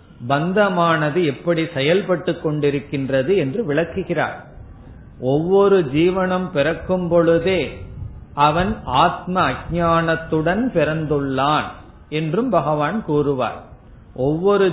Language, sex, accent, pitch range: Tamil, male, native, 140-180 Hz